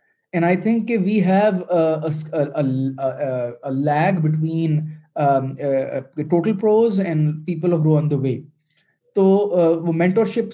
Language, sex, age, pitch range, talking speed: Urdu, male, 20-39, 145-185 Hz, 165 wpm